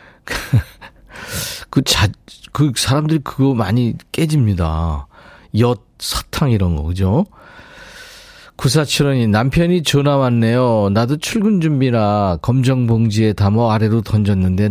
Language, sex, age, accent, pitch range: Korean, male, 40-59, native, 100-135 Hz